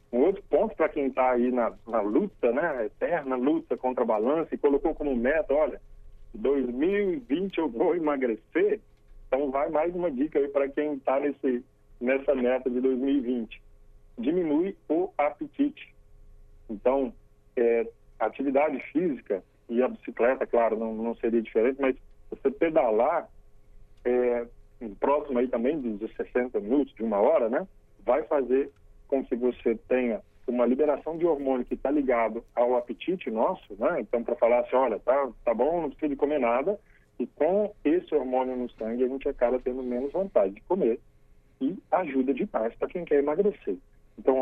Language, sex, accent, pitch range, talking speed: Portuguese, male, Brazilian, 120-155 Hz, 160 wpm